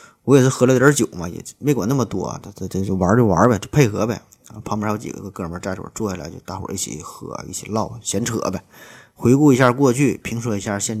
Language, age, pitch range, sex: Chinese, 20-39, 100-125 Hz, male